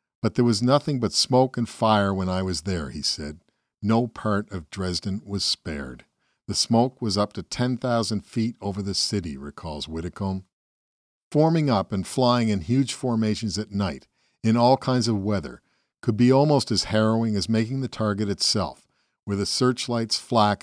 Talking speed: 175 wpm